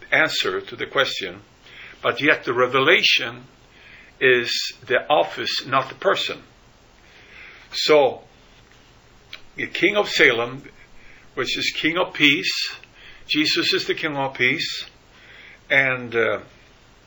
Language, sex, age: English, male, 50-69